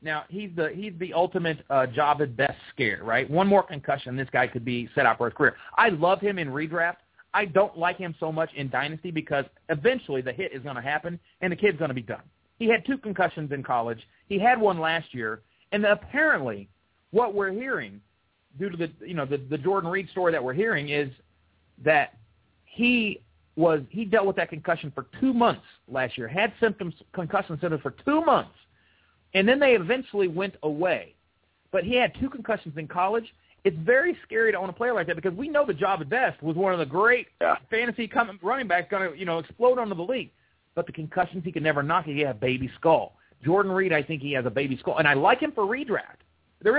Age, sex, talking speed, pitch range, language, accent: 40-59, male, 225 wpm, 145-205 Hz, English, American